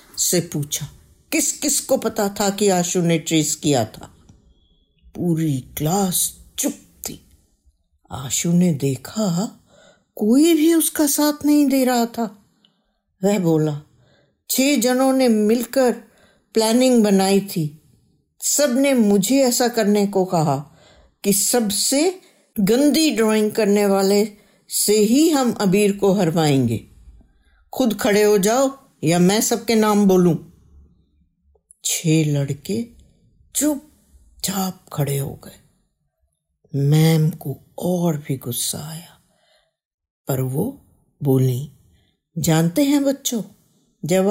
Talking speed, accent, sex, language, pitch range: 110 wpm, native, female, Hindi, 150-230 Hz